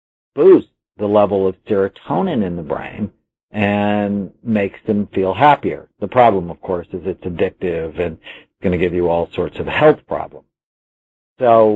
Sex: male